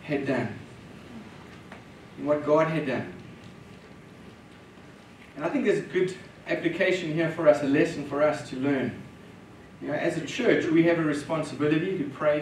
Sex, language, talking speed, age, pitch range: male, English, 155 wpm, 30-49, 145-180 Hz